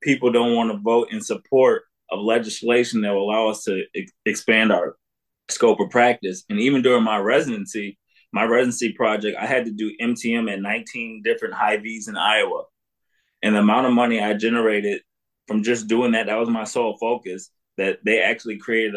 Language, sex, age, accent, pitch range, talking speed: English, male, 20-39, American, 105-130 Hz, 190 wpm